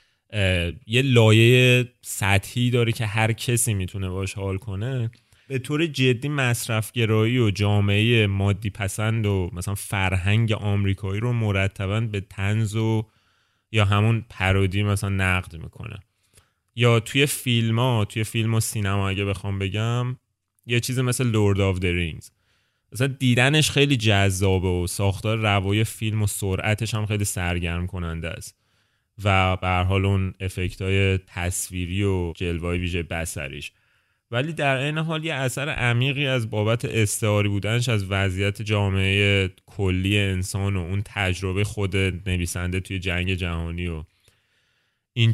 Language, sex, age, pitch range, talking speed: Persian, male, 30-49, 95-115 Hz, 130 wpm